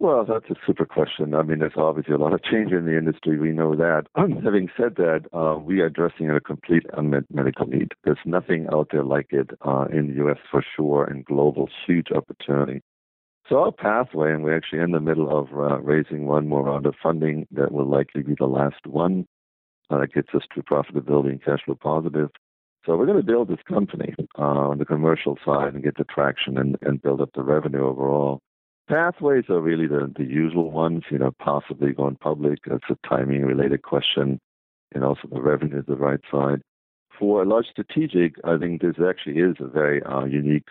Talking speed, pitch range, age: 210 wpm, 70-80 Hz, 60-79